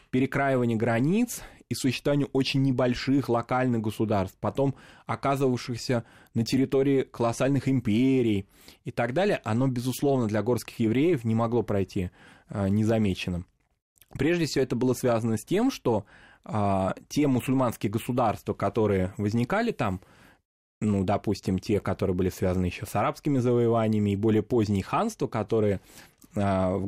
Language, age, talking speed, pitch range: Russian, 20-39, 125 wpm, 105-135 Hz